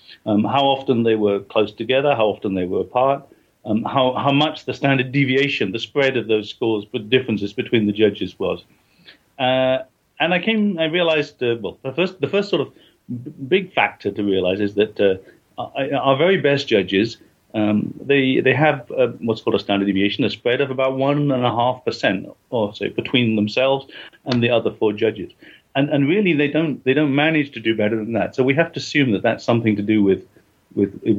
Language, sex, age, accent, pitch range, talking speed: English, male, 50-69, British, 105-135 Hz, 210 wpm